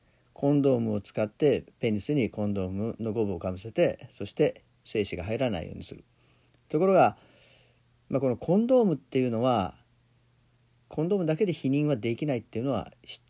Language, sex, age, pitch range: Japanese, male, 40-59, 105-130 Hz